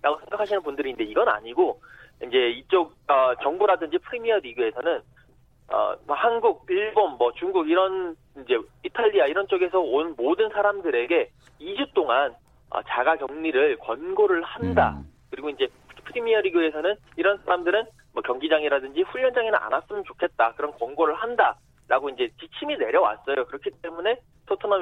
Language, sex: Korean, male